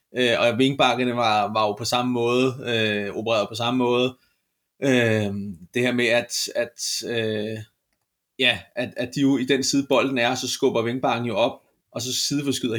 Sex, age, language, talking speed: male, 30-49, Danish, 180 wpm